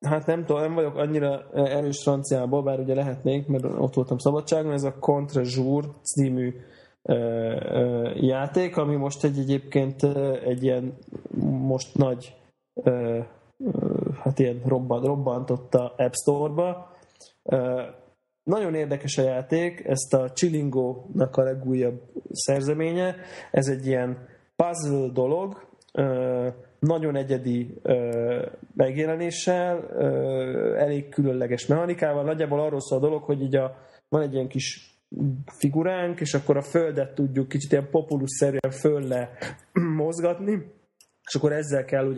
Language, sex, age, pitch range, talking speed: Hungarian, male, 20-39, 130-155 Hz, 120 wpm